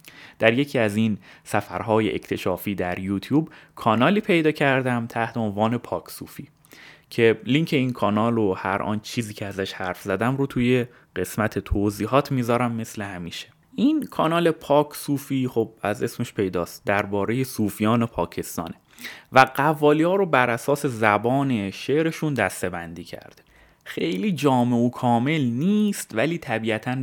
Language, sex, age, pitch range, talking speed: Persian, male, 30-49, 100-140 Hz, 140 wpm